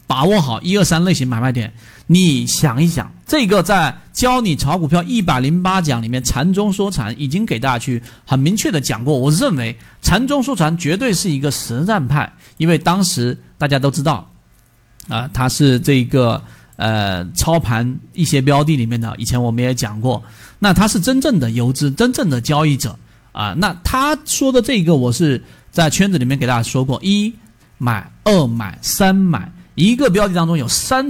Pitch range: 125-180 Hz